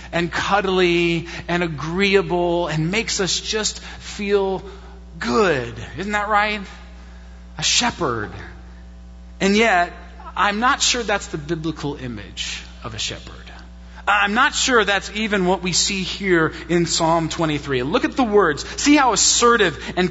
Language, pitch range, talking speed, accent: English, 140-205 Hz, 140 wpm, American